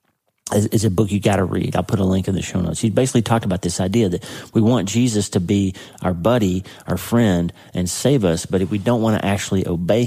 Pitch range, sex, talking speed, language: 90-110 Hz, male, 245 wpm, English